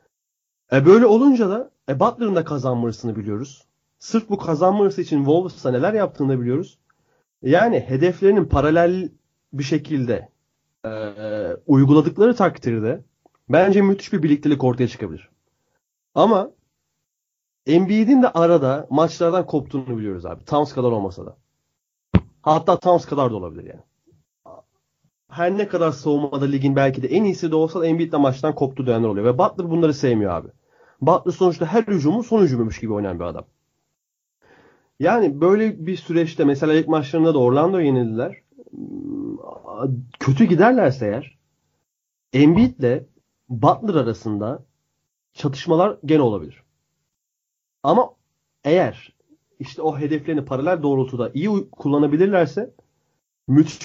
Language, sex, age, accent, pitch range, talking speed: Turkish, male, 30-49, native, 130-180 Hz, 125 wpm